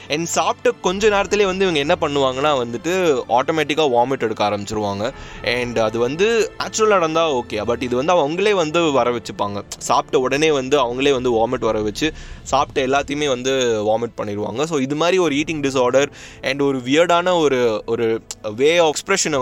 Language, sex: Tamil, male